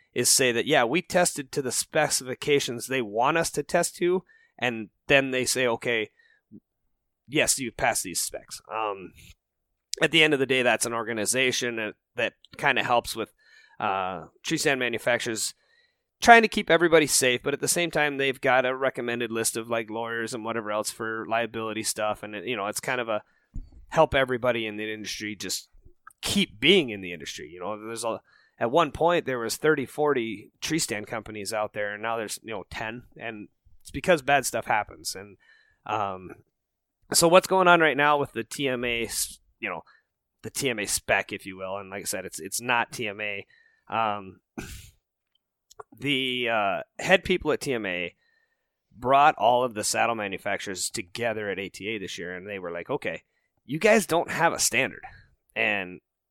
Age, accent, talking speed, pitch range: 30-49, American, 185 wpm, 110-160 Hz